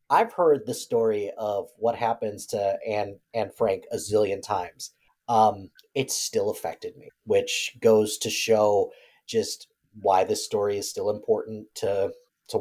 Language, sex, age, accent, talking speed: English, male, 30-49, American, 150 wpm